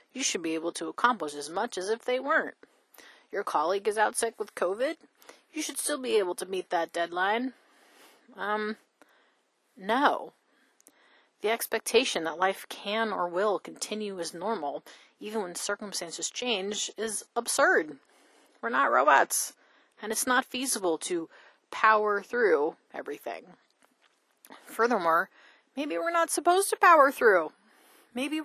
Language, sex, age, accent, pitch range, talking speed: English, female, 30-49, American, 190-275 Hz, 140 wpm